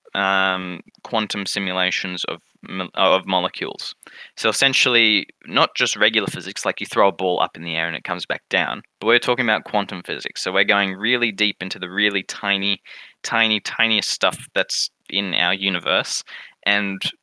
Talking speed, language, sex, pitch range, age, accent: 170 wpm, English, male, 95-110 Hz, 10-29, Australian